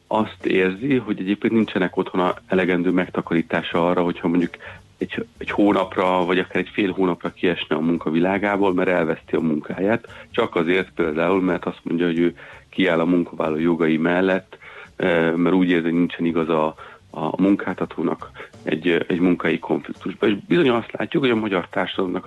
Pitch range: 85-100 Hz